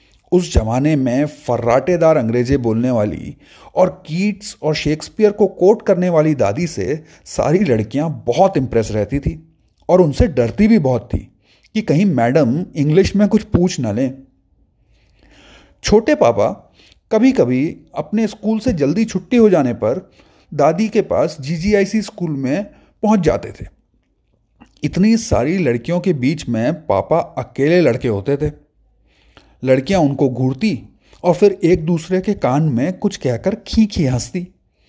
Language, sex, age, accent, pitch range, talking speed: Hindi, male, 30-49, native, 125-205 Hz, 145 wpm